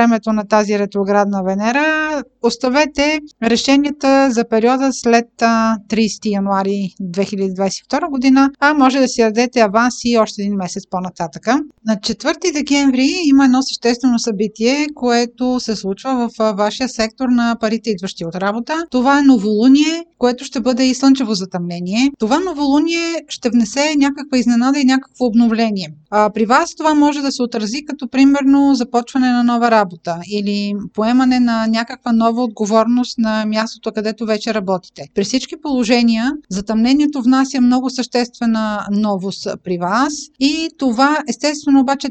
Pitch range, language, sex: 215-265 Hz, Bulgarian, female